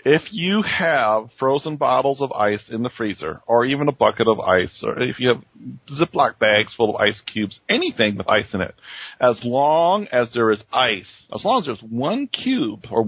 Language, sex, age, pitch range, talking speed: English, male, 40-59, 110-145 Hz, 200 wpm